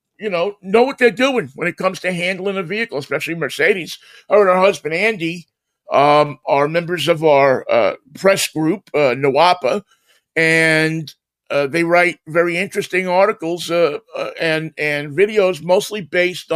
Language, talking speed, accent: English, 155 wpm, American